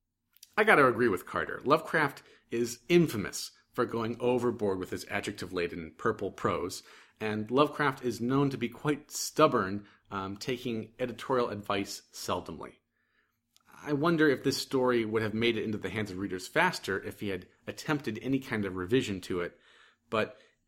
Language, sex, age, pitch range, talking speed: English, male, 40-59, 100-130 Hz, 160 wpm